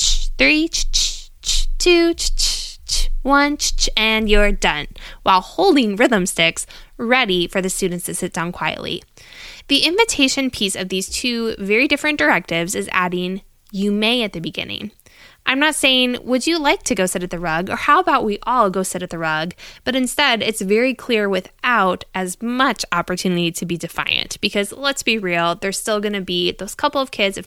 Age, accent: 10-29, American